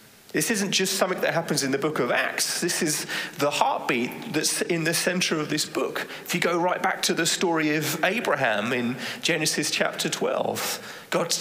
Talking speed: 195 wpm